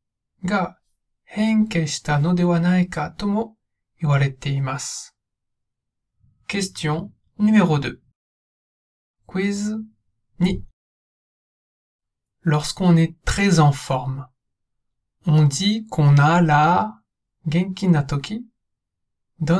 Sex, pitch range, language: male, 125-180 Hz, Japanese